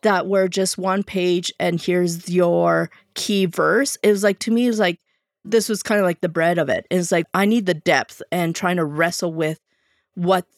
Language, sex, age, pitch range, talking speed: English, female, 40-59, 175-210 Hz, 220 wpm